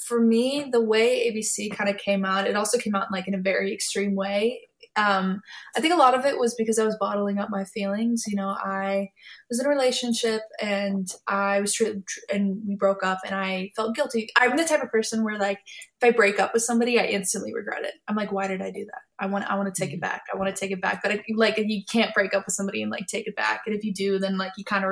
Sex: female